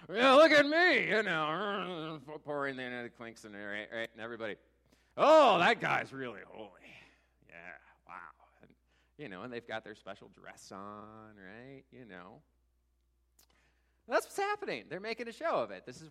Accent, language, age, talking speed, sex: American, English, 30-49, 170 wpm, male